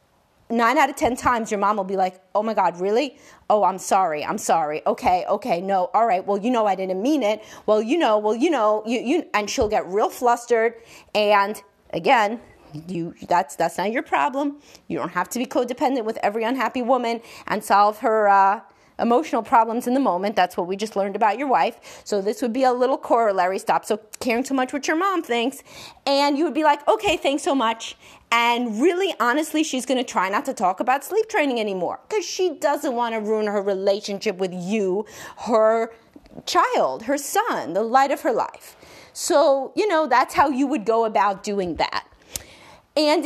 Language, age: English, 30-49